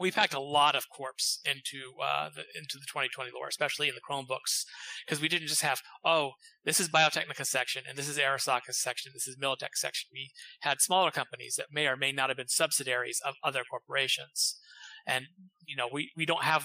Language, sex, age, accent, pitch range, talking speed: English, male, 30-49, American, 130-160 Hz, 210 wpm